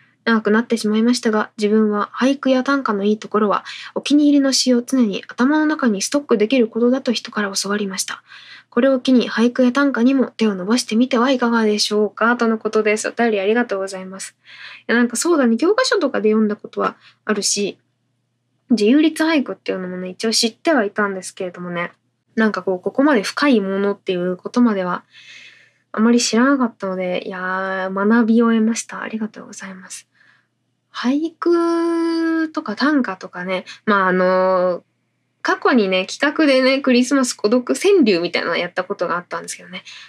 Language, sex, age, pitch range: Japanese, female, 20-39, 190-260 Hz